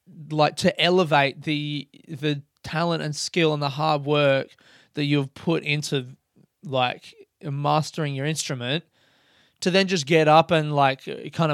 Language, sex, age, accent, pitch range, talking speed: English, male, 20-39, Australian, 150-185 Hz, 145 wpm